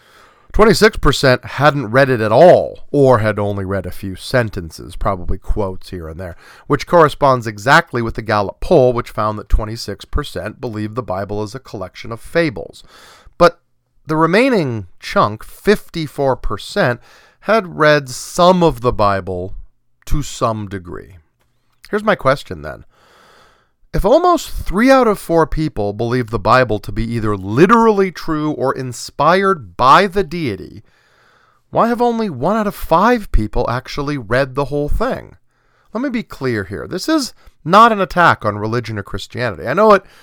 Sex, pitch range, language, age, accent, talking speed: male, 105-165 Hz, English, 40-59, American, 155 wpm